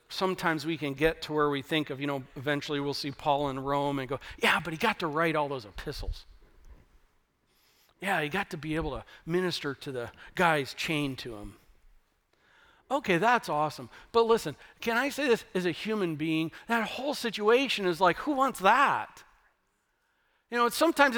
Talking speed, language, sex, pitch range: 185 wpm, English, male, 150-215 Hz